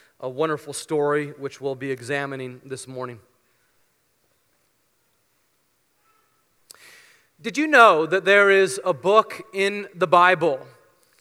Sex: male